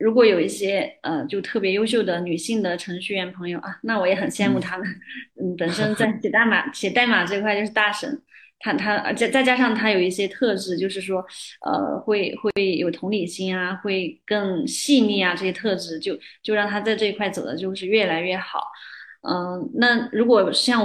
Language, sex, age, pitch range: Chinese, female, 20-39, 190-255 Hz